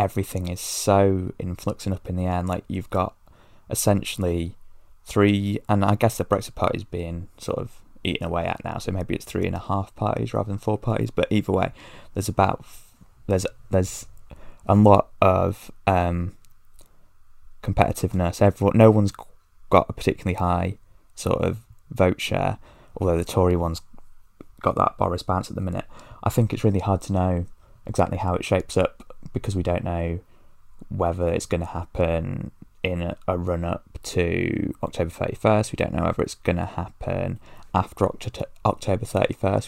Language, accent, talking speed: English, British, 170 wpm